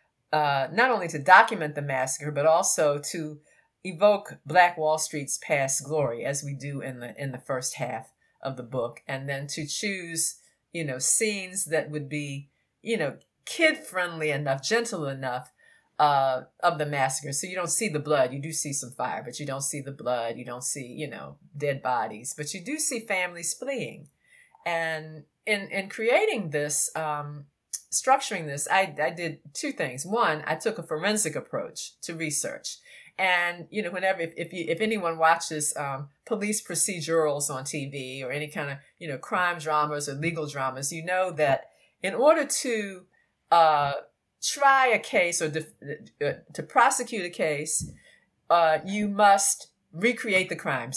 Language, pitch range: English, 140-185 Hz